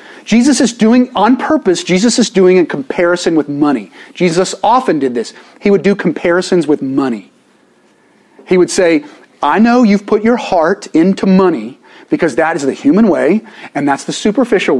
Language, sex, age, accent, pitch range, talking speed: English, male, 30-49, American, 170-245 Hz, 175 wpm